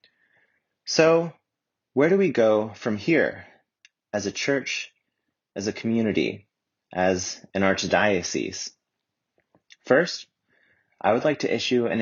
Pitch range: 95-120 Hz